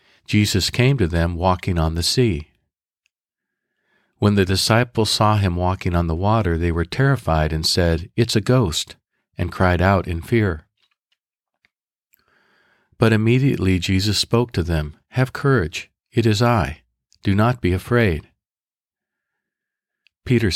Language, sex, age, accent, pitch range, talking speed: English, male, 50-69, American, 85-115 Hz, 135 wpm